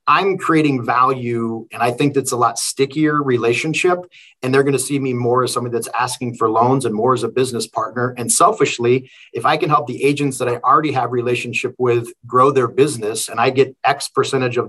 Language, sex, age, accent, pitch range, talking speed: English, male, 40-59, American, 120-145 Hz, 215 wpm